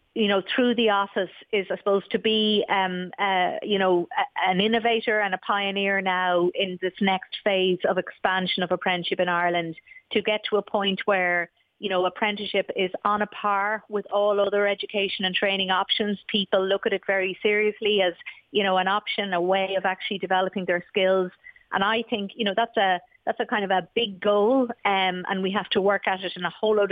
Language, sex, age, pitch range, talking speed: English, female, 30-49, 185-210 Hz, 205 wpm